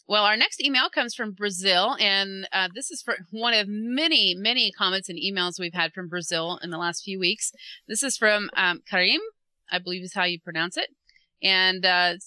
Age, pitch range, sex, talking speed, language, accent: 30-49, 190-245 Hz, female, 205 wpm, English, American